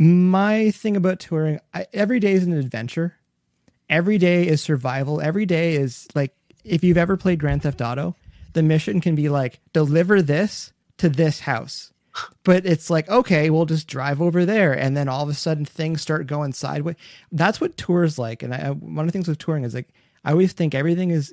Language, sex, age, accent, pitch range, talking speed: English, male, 30-49, American, 130-165 Hz, 210 wpm